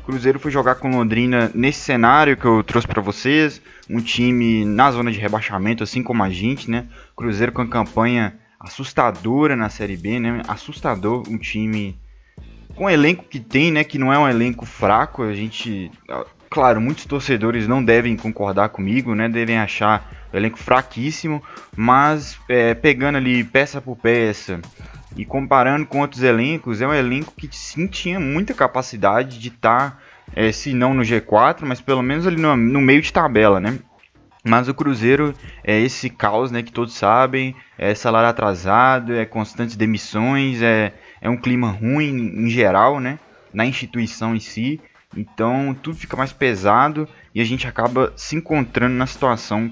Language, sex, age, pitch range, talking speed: Portuguese, male, 20-39, 110-135 Hz, 165 wpm